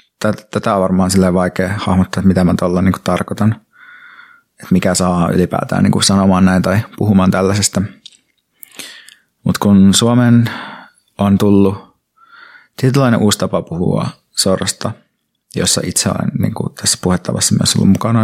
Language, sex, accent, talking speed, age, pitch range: Finnish, male, native, 140 wpm, 30-49, 95-110 Hz